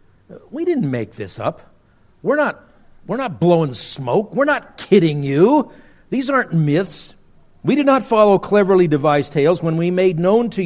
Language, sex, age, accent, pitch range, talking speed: English, male, 50-69, American, 140-205 Hz, 170 wpm